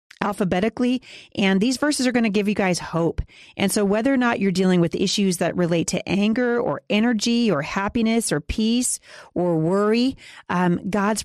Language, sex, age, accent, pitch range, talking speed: English, female, 30-49, American, 175-230 Hz, 180 wpm